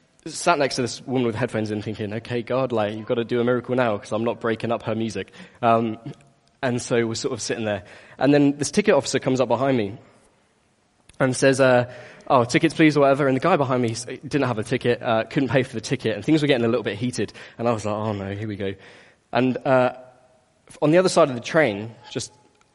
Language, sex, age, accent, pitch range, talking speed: English, male, 10-29, British, 115-145 Hz, 245 wpm